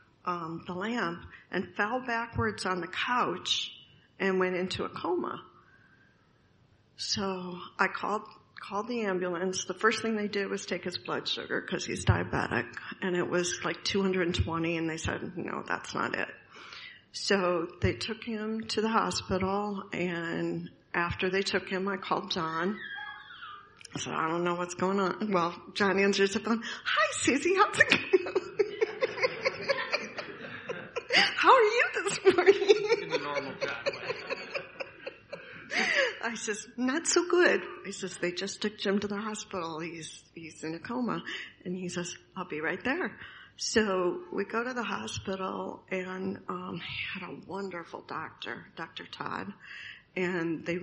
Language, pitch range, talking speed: English, 175-225 Hz, 150 wpm